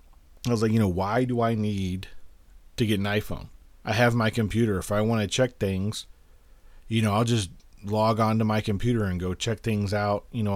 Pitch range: 95-120 Hz